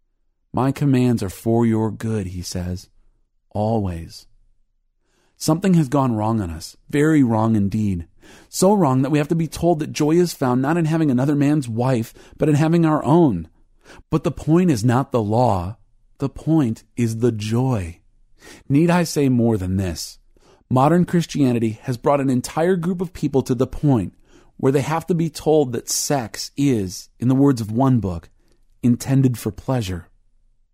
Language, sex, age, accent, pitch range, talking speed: English, male, 40-59, American, 110-150 Hz, 175 wpm